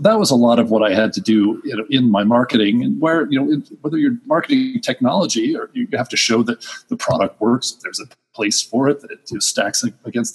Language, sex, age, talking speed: English, male, 40-59, 225 wpm